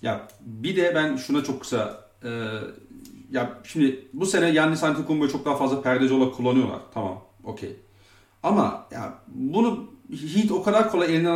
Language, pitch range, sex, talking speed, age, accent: Turkish, 115-155 Hz, male, 160 wpm, 40-59, native